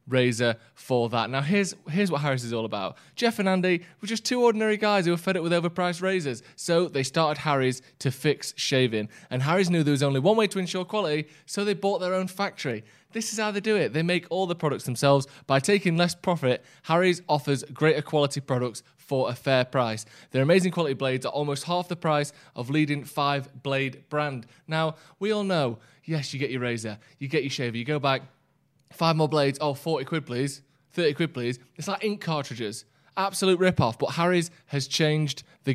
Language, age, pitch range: English, 20-39, 135-175 Hz